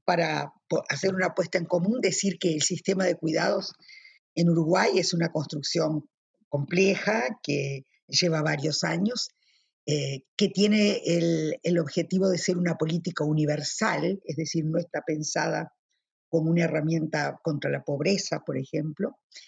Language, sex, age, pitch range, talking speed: Spanish, female, 50-69, 165-205 Hz, 140 wpm